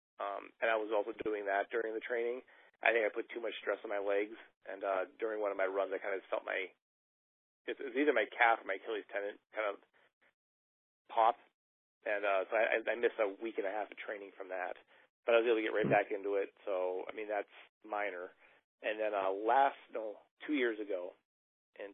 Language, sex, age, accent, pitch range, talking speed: English, male, 30-49, American, 100-120 Hz, 225 wpm